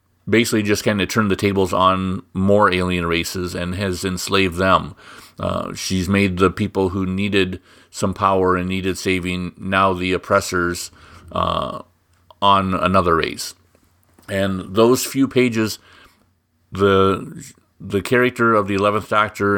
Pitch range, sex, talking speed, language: 90-105 Hz, male, 140 wpm, English